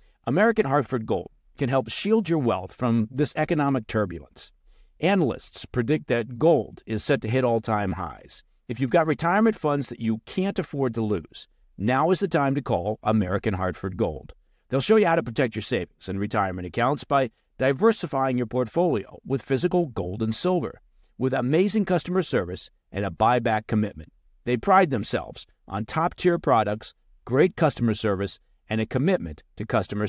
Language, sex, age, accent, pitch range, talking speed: English, male, 50-69, American, 110-160 Hz, 170 wpm